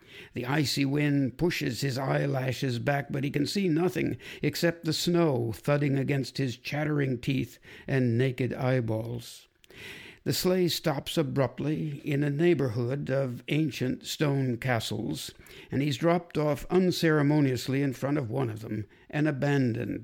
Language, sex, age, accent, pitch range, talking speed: English, male, 60-79, American, 120-145 Hz, 140 wpm